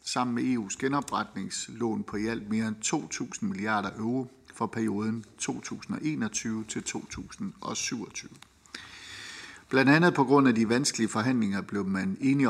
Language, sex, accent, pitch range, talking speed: Danish, male, native, 105-125 Hz, 125 wpm